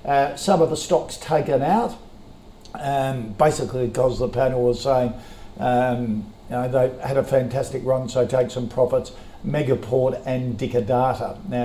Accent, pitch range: Australian, 120-145 Hz